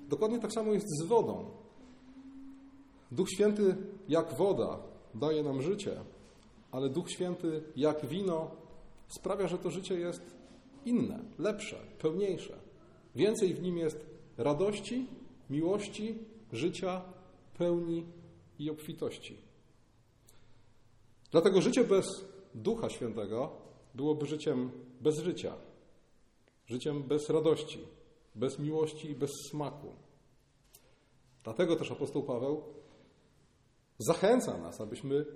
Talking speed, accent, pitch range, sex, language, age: 100 wpm, native, 145-195 Hz, male, Polish, 40-59